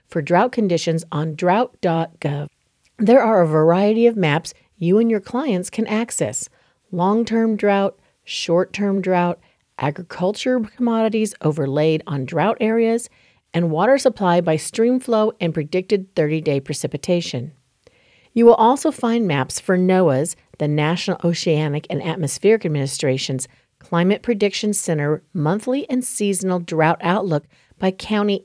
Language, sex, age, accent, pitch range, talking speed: English, female, 50-69, American, 155-220 Hz, 125 wpm